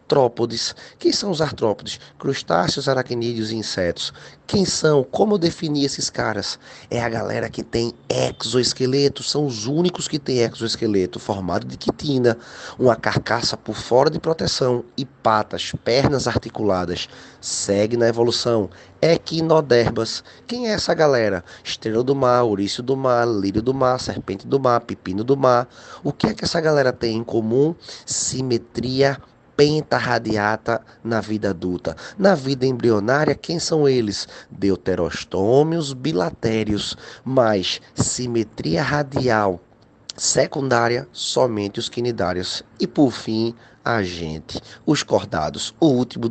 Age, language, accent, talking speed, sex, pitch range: 20-39, Portuguese, Brazilian, 130 wpm, male, 110-140 Hz